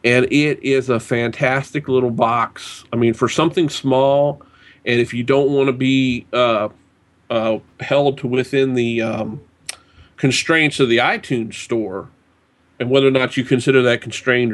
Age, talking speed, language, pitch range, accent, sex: 40-59, 160 wpm, English, 120-135 Hz, American, male